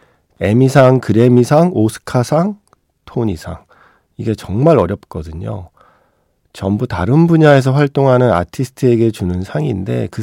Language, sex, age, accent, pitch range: Korean, male, 40-59, native, 95-130 Hz